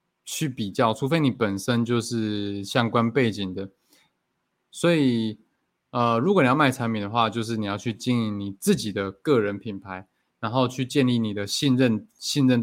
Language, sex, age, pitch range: Chinese, male, 20-39, 110-135 Hz